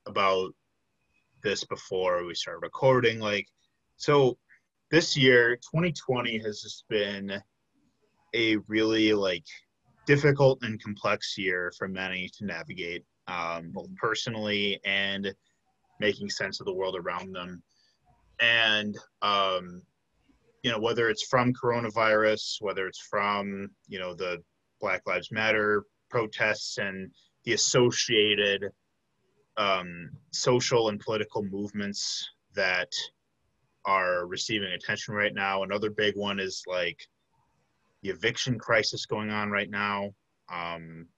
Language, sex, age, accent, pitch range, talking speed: English, male, 20-39, American, 100-125 Hz, 120 wpm